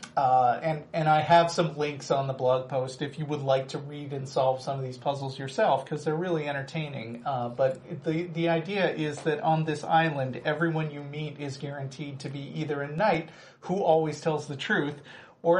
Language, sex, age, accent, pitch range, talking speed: English, male, 40-59, American, 140-170 Hz, 210 wpm